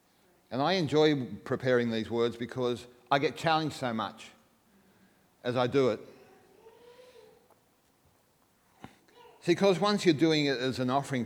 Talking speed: 130 wpm